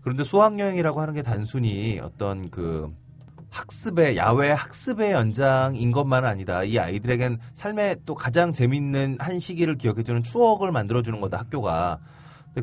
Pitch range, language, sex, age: 110-155 Hz, Korean, male, 30-49